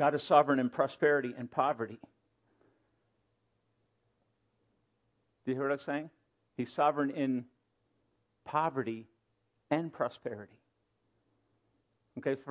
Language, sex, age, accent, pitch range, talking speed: English, male, 50-69, American, 120-175 Hz, 95 wpm